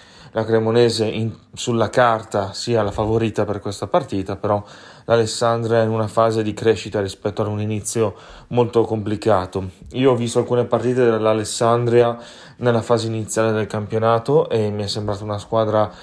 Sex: male